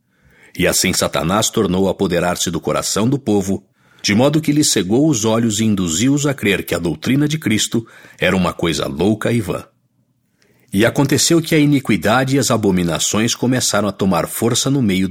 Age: 60-79